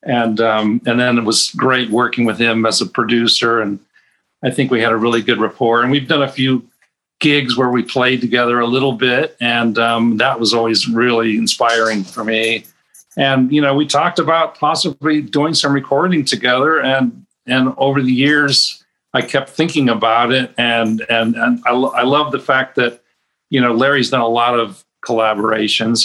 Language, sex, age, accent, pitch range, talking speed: English, male, 50-69, American, 115-135 Hz, 190 wpm